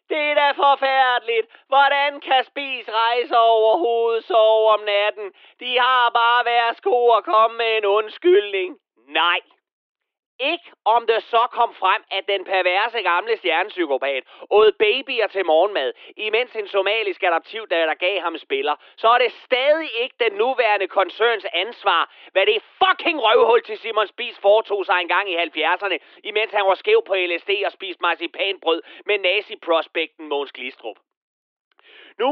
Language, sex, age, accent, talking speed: Danish, male, 30-49, native, 155 wpm